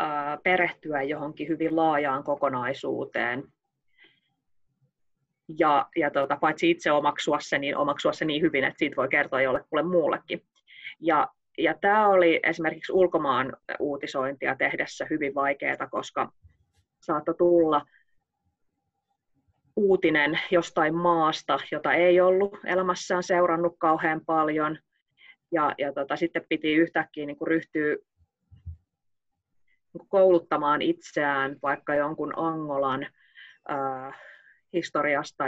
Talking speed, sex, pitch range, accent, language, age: 105 wpm, female, 135-165 Hz, native, Finnish, 30-49